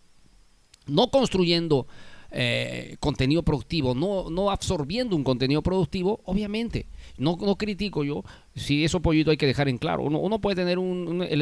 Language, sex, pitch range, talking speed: Spanish, male, 130-185 Hz, 165 wpm